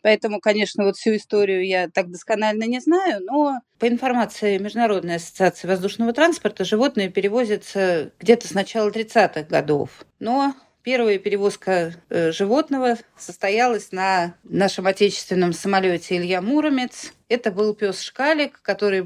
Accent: native